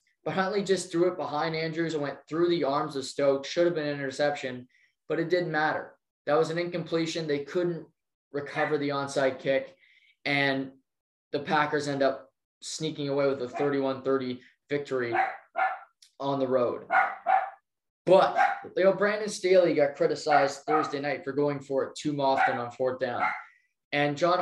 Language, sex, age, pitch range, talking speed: English, male, 20-39, 140-175 Hz, 165 wpm